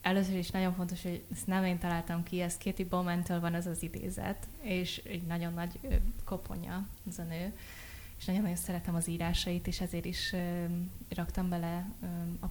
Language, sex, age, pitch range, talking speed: Hungarian, female, 20-39, 175-190 Hz, 175 wpm